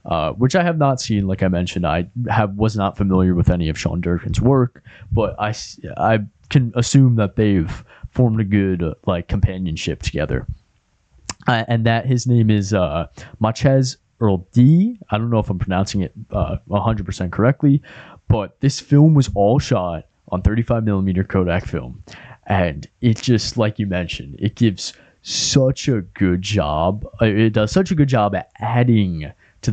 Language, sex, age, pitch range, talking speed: English, male, 20-39, 95-120 Hz, 170 wpm